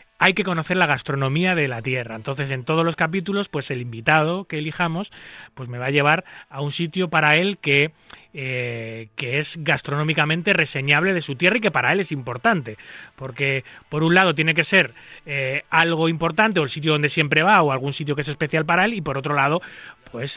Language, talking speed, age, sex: Spanish, 210 wpm, 30-49, male